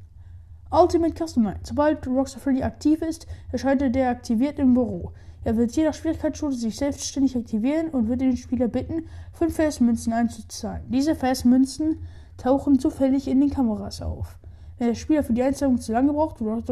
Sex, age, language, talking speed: female, 10-29, German, 165 wpm